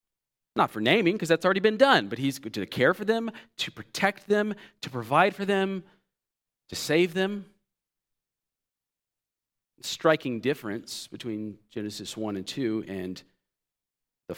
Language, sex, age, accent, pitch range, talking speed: English, male, 40-59, American, 110-180 Hz, 140 wpm